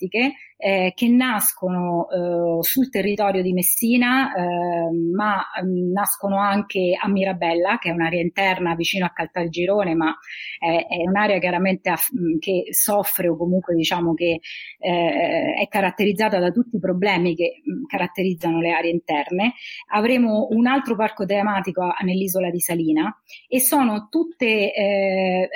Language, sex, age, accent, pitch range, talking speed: Italian, female, 30-49, native, 180-220 Hz, 145 wpm